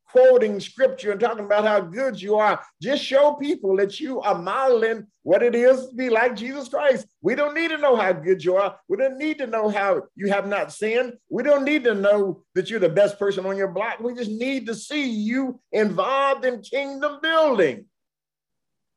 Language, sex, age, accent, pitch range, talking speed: English, male, 50-69, American, 185-270 Hz, 210 wpm